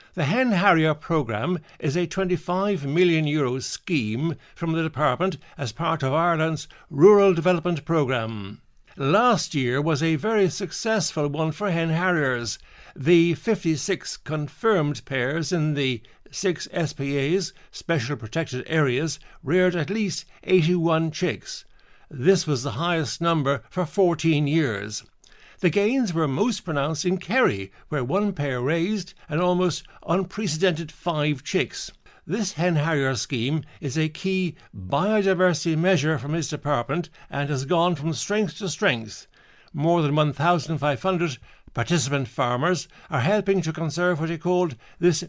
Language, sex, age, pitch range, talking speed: English, male, 60-79, 145-180 Hz, 135 wpm